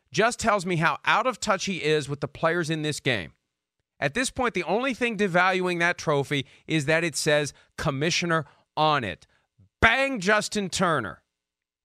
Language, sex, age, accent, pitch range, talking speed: English, male, 40-59, American, 135-195 Hz, 170 wpm